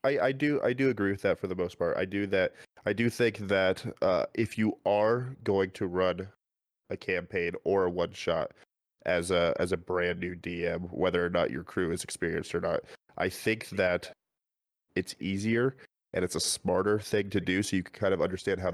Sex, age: male, 20-39